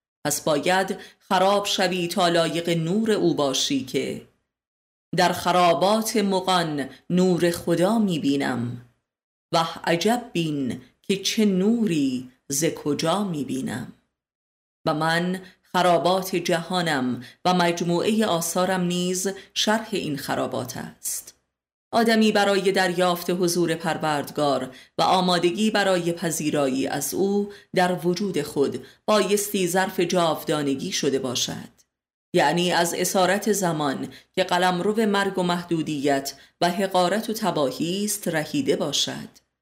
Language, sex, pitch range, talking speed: Persian, female, 150-190 Hz, 110 wpm